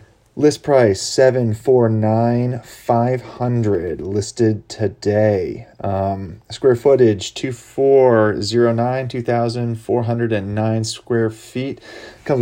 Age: 30-49